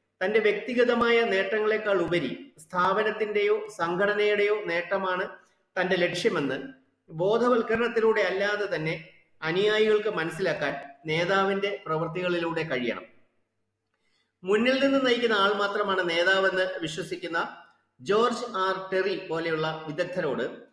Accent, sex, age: native, male, 30-49